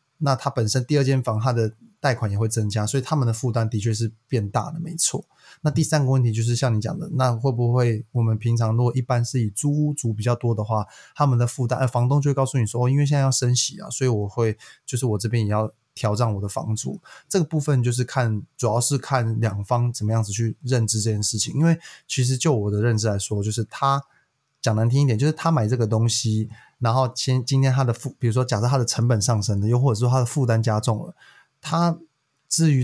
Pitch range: 115-135 Hz